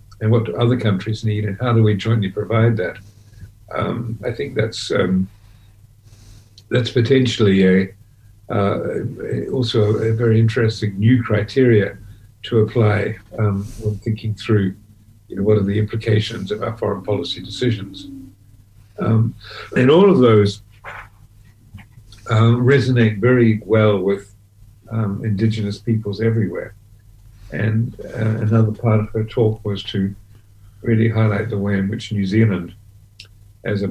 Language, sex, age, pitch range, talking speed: English, male, 50-69, 100-115 Hz, 140 wpm